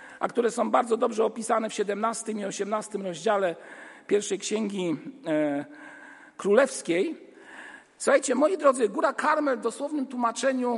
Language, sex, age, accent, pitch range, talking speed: Polish, male, 50-69, native, 185-250 Hz, 130 wpm